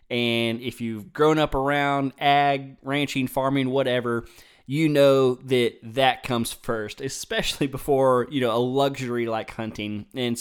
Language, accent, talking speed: English, American, 145 wpm